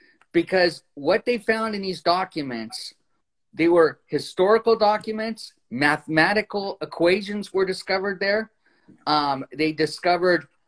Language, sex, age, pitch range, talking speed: English, male, 40-59, 155-210 Hz, 105 wpm